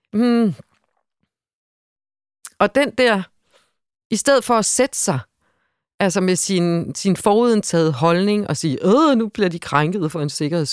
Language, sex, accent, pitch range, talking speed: Danish, female, native, 165-205 Hz, 145 wpm